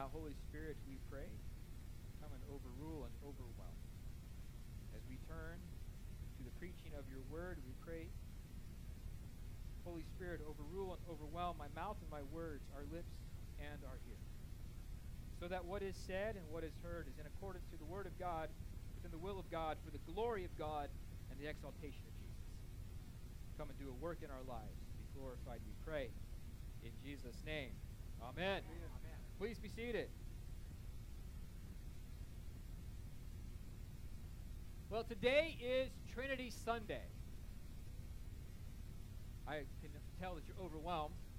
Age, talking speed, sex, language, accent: 40-59, 140 wpm, male, English, American